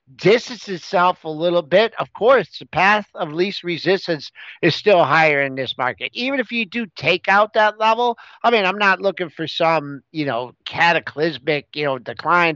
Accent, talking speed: American, 185 wpm